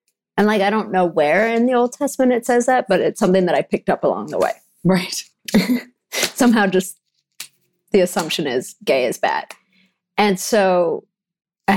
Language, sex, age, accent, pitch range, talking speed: English, female, 30-49, American, 175-220 Hz, 180 wpm